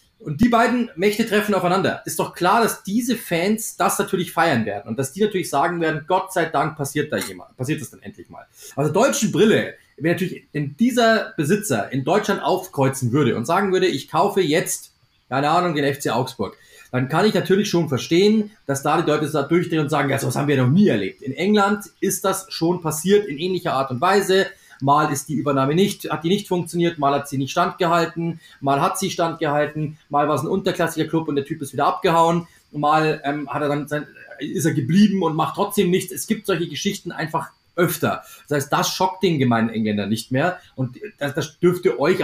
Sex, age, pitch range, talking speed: male, 30-49, 140-185 Hz, 220 wpm